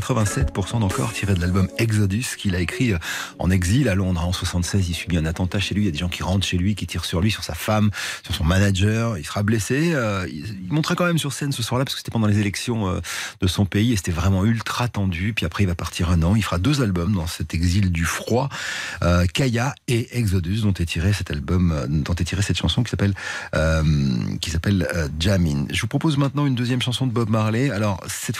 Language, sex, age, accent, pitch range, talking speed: French, male, 40-59, French, 90-130 Hz, 250 wpm